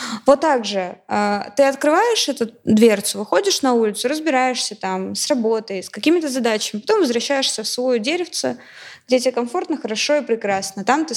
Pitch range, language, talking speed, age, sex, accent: 220-255 Hz, Russian, 160 wpm, 20-39, female, native